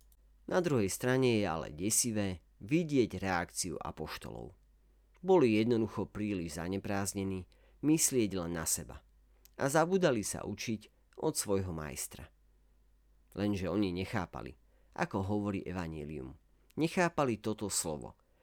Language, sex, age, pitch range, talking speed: Slovak, male, 40-59, 90-120 Hz, 105 wpm